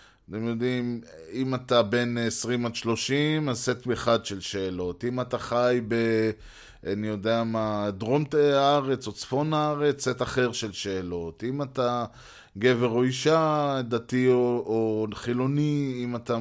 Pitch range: 110-130 Hz